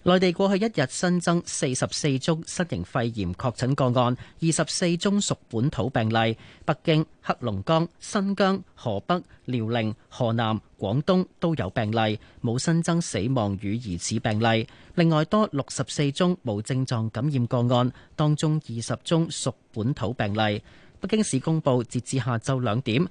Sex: male